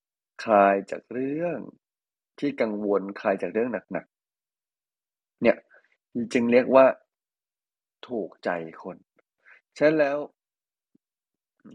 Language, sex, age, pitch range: Thai, male, 20-39, 100-130 Hz